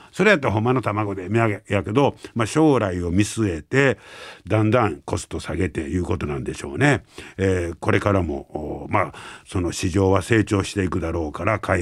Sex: male